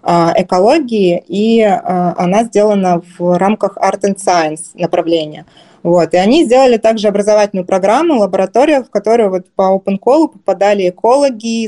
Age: 20-39